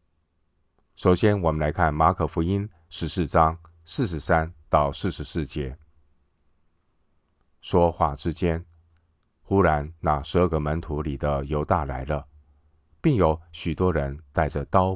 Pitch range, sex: 75-85 Hz, male